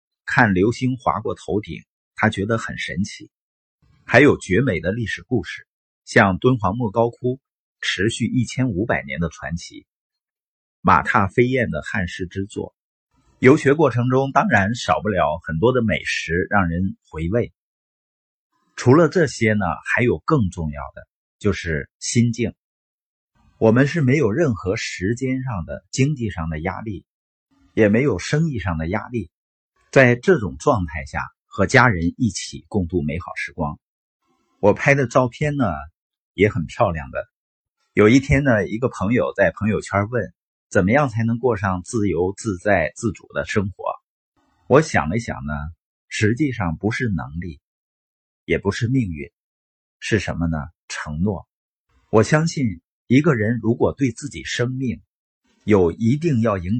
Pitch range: 90-125 Hz